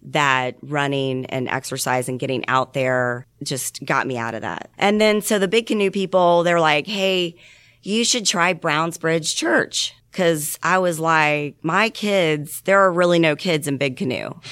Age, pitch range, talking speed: 30-49, 140-170 Hz, 170 wpm